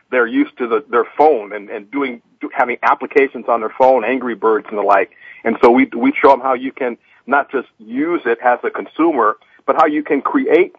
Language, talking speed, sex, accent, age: English, 230 wpm, male, American, 50-69